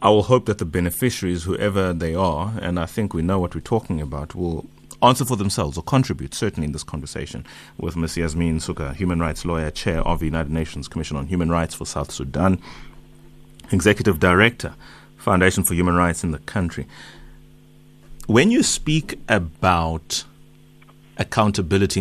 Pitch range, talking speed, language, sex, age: 85-110 Hz, 165 wpm, English, male, 30-49